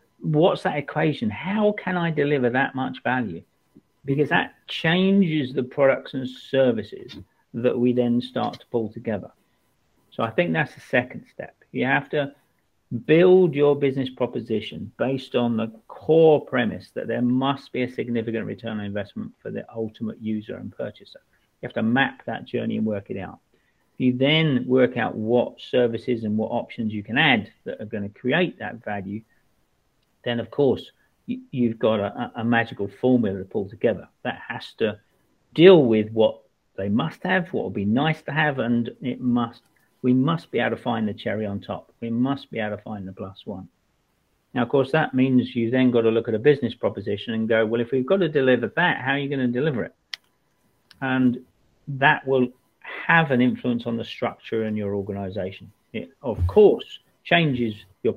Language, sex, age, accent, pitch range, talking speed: English, male, 50-69, British, 110-140 Hz, 190 wpm